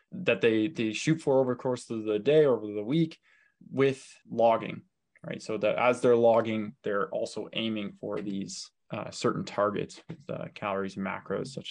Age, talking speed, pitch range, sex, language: 20-39, 185 wpm, 100-125 Hz, male, English